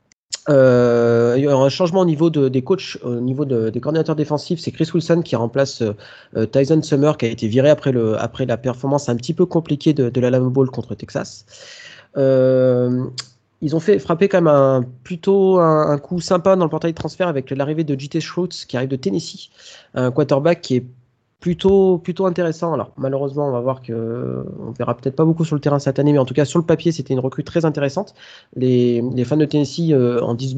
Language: French